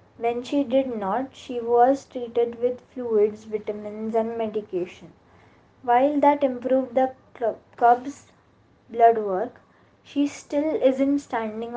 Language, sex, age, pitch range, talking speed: English, female, 20-39, 215-255 Hz, 115 wpm